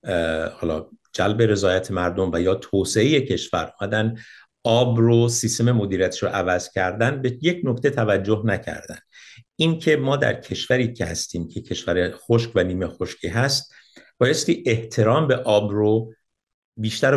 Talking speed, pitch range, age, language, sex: 140 wpm, 95-125 Hz, 50-69, Persian, male